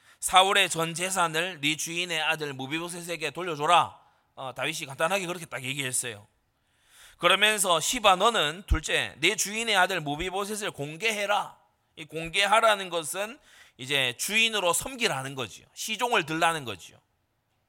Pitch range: 130-210 Hz